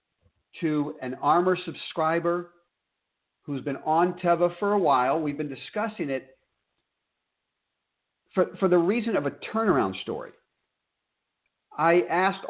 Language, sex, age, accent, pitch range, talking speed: English, male, 50-69, American, 115-165 Hz, 120 wpm